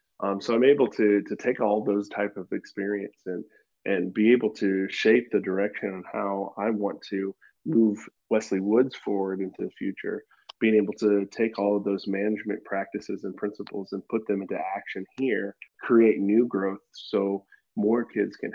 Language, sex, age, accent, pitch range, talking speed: English, male, 20-39, American, 100-110 Hz, 180 wpm